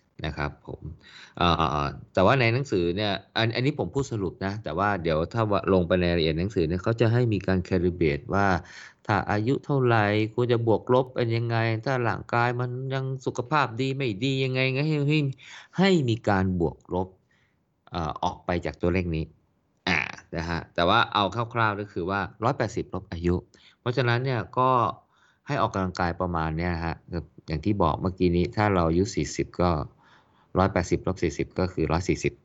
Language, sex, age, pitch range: Thai, male, 20-39, 85-115 Hz